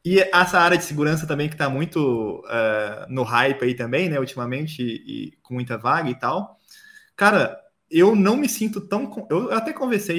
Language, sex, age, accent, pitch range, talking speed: Portuguese, male, 20-39, Brazilian, 135-205 Hz, 190 wpm